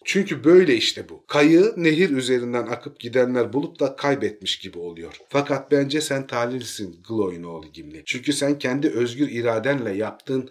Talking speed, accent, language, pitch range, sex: 155 wpm, native, Turkish, 110-145 Hz, male